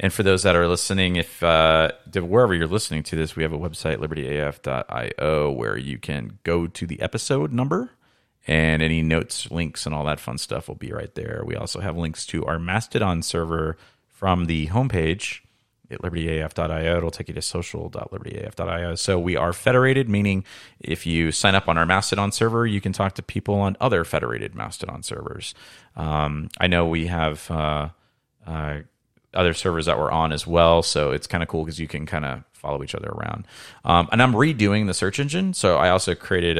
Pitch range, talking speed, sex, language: 80-100 Hz, 195 wpm, male, English